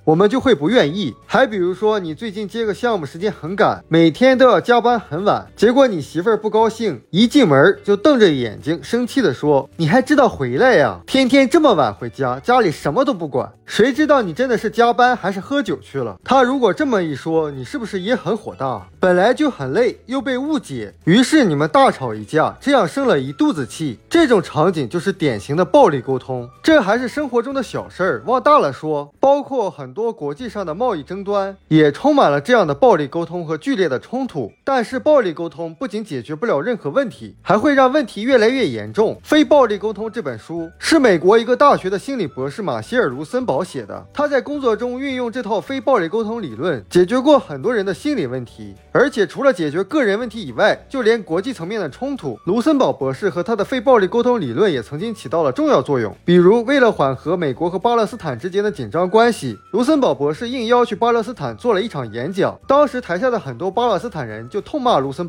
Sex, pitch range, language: male, 165-260 Hz, Chinese